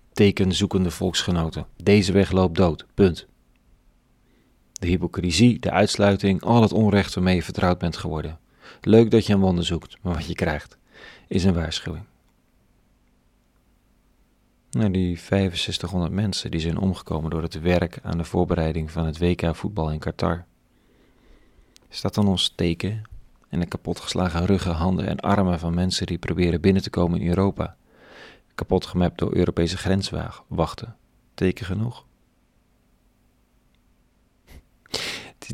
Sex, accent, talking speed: male, Dutch, 135 wpm